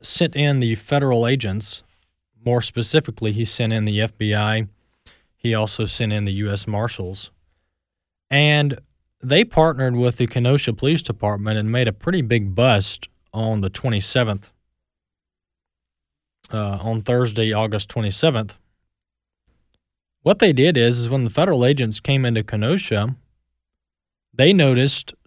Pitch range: 95-140 Hz